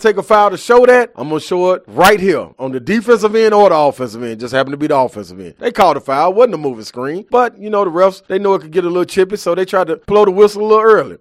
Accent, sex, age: American, male, 30-49